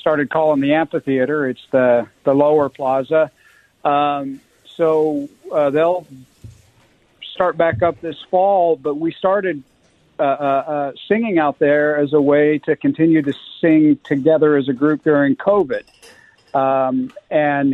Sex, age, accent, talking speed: male, 50-69, American, 140 wpm